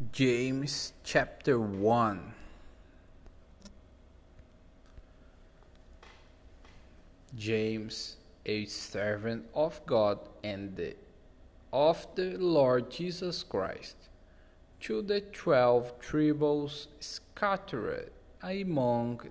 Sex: male